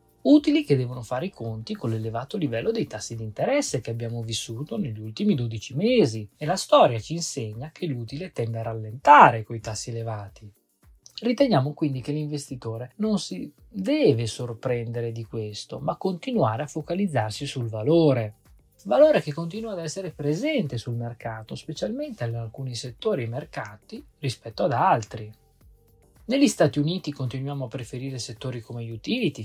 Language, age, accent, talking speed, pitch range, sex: Italian, 20-39, native, 155 wpm, 115-165 Hz, male